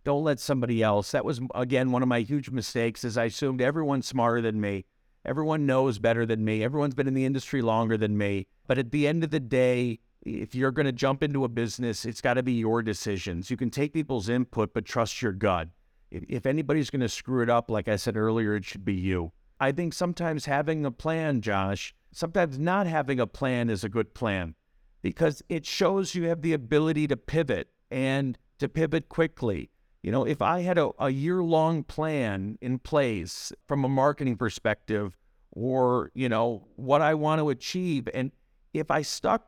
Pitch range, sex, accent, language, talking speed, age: 115-150 Hz, male, American, English, 205 wpm, 50-69